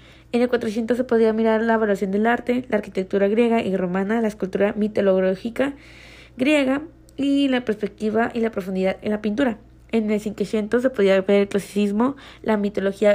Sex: female